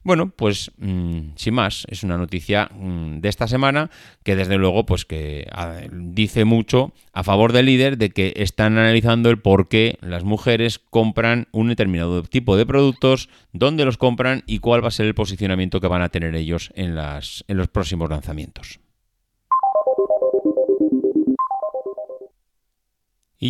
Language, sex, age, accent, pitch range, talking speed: Spanish, male, 30-49, Spanish, 95-130 Hz, 150 wpm